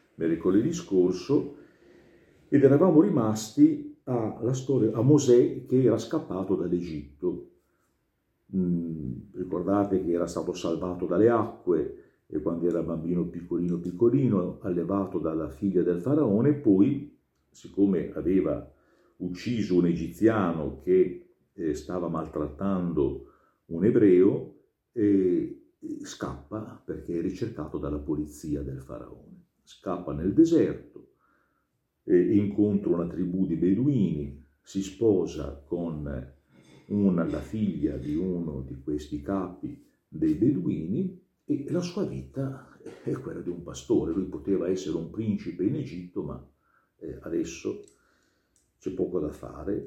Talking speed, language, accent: 120 wpm, Italian, native